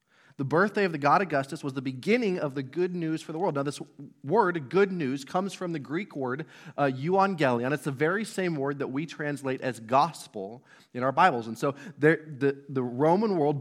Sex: male